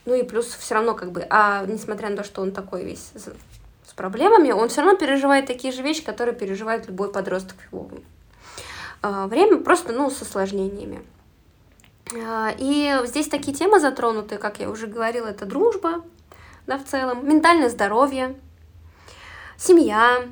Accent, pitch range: native, 195-255 Hz